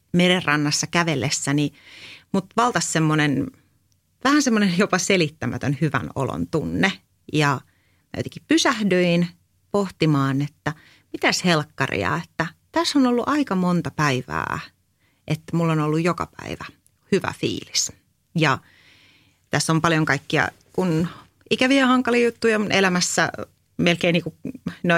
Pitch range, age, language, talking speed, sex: 150-190 Hz, 30-49, Finnish, 115 wpm, female